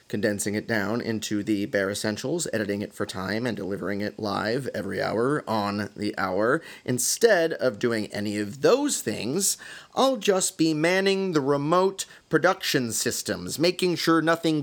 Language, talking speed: English, 155 wpm